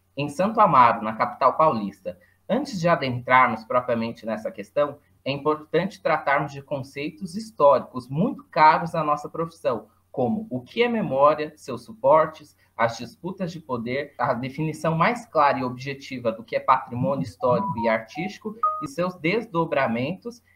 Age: 20-39